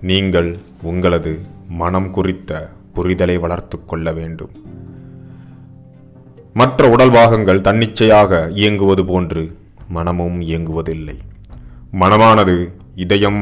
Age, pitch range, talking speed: 30-49, 85-105 Hz, 80 wpm